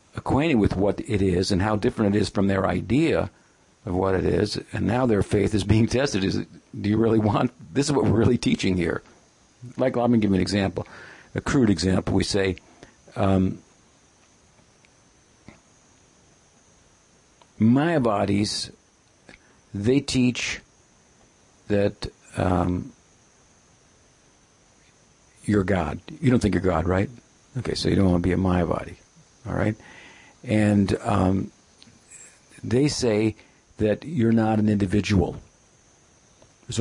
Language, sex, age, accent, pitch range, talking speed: English, male, 60-79, American, 95-115 Hz, 140 wpm